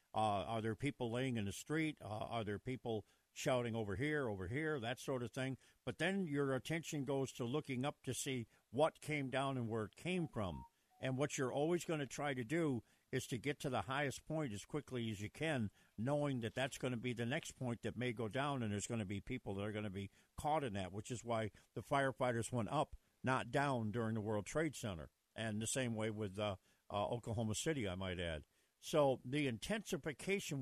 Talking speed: 225 wpm